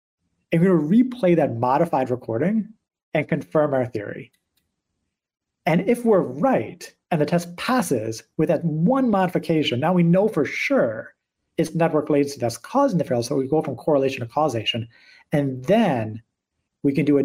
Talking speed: 170 wpm